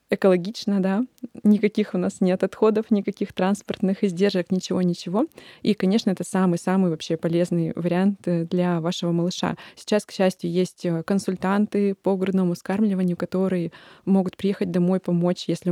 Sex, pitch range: female, 175-205 Hz